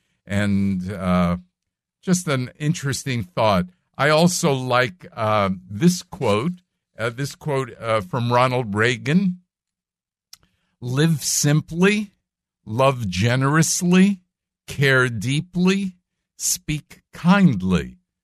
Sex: male